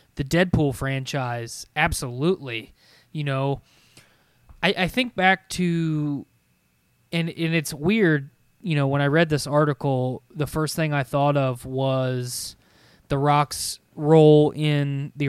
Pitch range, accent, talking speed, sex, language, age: 135-160 Hz, American, 135 wpm, male, English, 20-39